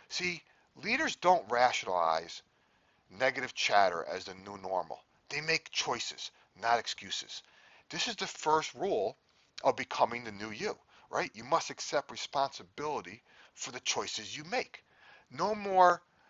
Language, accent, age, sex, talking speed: English, American, 40-59, male, 135 wpm